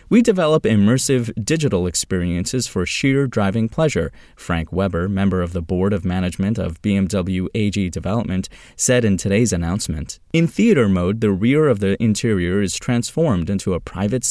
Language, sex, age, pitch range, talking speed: English, male, 30-49, 90-120 Hz, 160 wpm